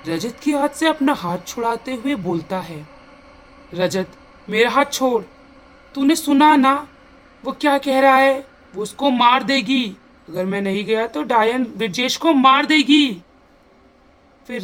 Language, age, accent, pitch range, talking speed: Hindi, 40-59, native, 210-280 Hz, 150 wpm